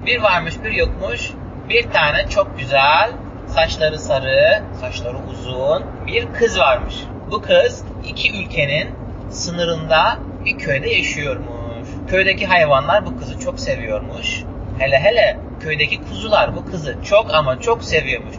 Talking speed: 125 wpm